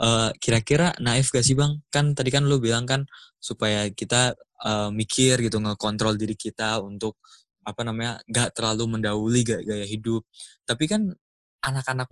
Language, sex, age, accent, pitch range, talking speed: Indonesian, male, 20-39, native, 105-125 Hz, 155 wpm